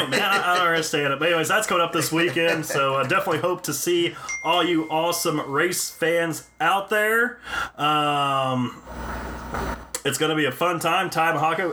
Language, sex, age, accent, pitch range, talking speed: English, male, 30-49, American, 130-170 Hz, 190 wpm